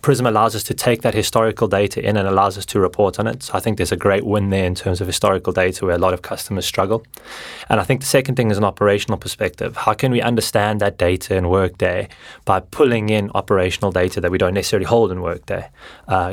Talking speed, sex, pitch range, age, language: 245 wpm, male, 95-110 Hz, 20-39, English